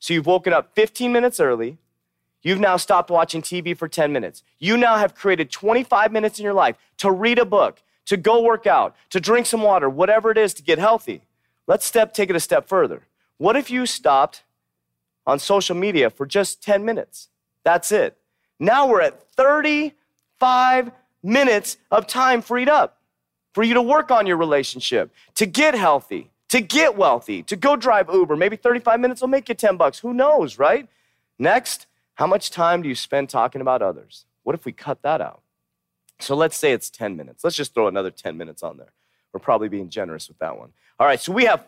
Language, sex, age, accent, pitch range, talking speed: English, male, 30-49, American, 165-240 Hz, 205 wpm